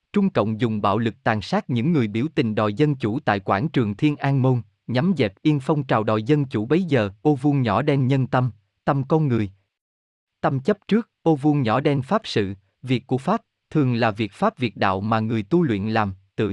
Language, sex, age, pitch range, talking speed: Vietnamese, male, 20-39, 110-150 Hz, 230 wpm